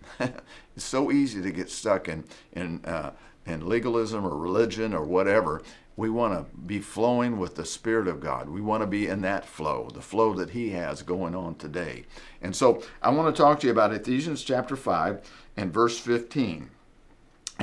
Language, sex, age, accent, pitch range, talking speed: English, male, 50-69, American, 95-120 Hz, 185 wpm